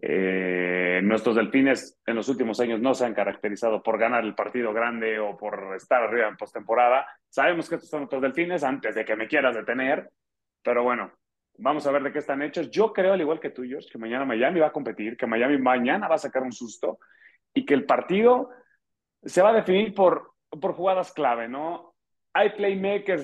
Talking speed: 200 wpm